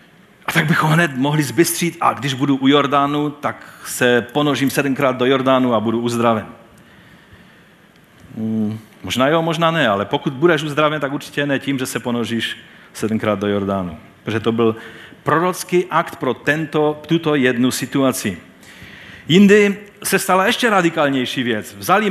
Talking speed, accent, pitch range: 145 wpm, native, 125-180 Hz